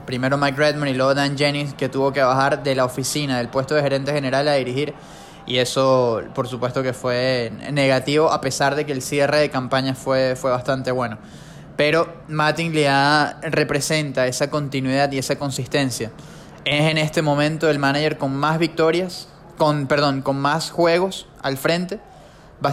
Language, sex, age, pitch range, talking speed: English, male, 20-39, 135-150 Hz, 175 wpm